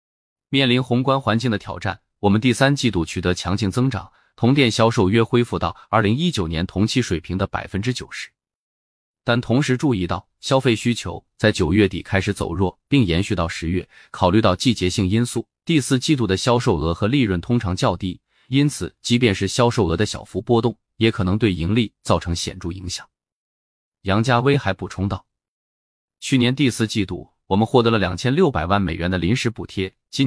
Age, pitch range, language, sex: 20-39, 90-120 Hz, Chinese, male